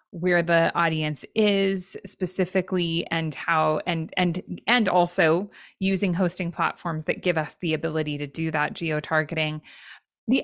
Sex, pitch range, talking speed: female, 165-195 Hz, 140 wpm